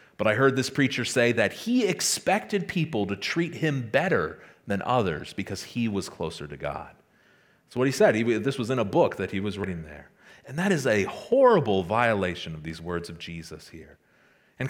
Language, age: English, 30-49